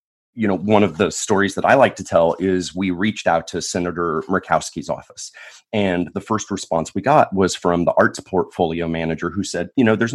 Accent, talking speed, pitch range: American, 215 wpm, 85-105 Hz